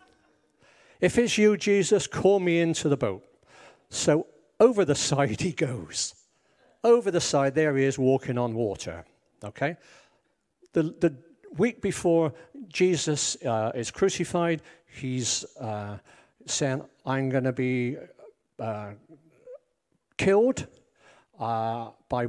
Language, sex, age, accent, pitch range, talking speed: English, male, 60-79, British, 120-165 Hz, 120 wpm